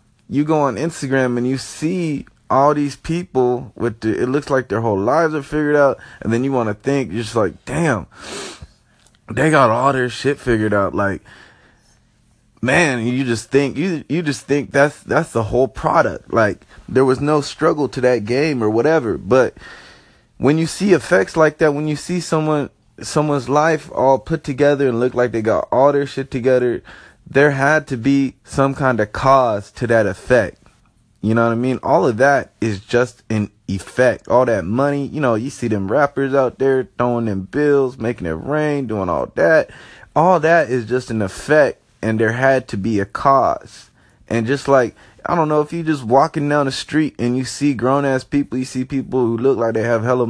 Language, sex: English, male